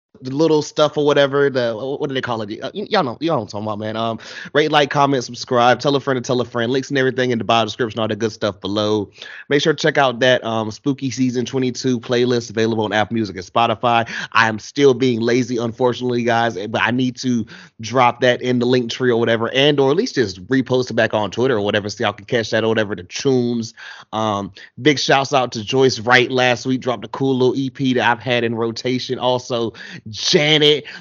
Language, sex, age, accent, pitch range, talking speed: English, male, 30-49, American, 120-145 Hz, 235 wpm